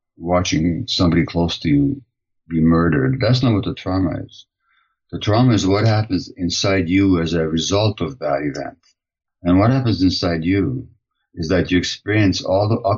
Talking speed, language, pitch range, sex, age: 170 wpm, English, 85-110 Hz, male, 50-69